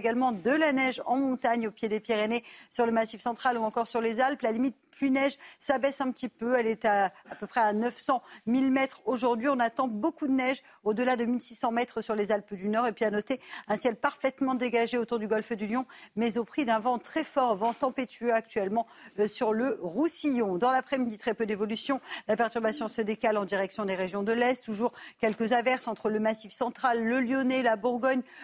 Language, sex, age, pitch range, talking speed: French, female, 50-69, 220-260 Hz, 220 wpm